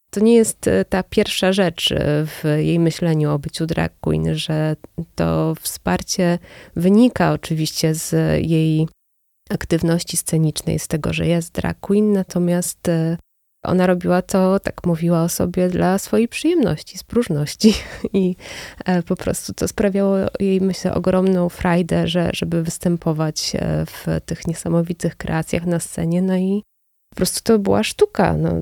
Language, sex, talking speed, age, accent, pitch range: Polish, female, 135 wpm, 20-39, native, 160-180 Hz